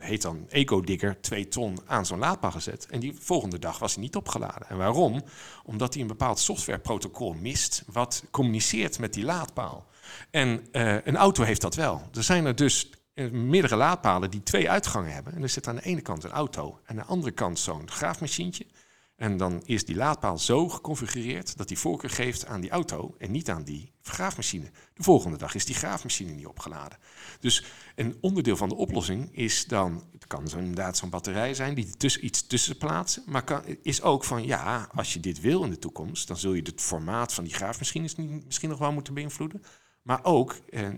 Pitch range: 95-135 Hz